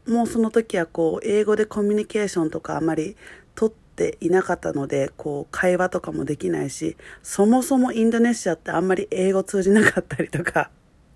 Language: Japanese